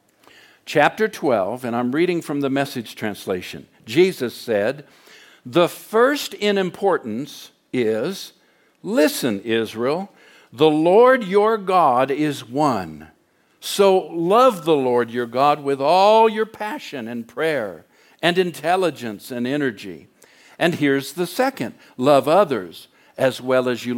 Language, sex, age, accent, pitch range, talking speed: English, male, 60-79, American, 130-205 Hz, 125 wpm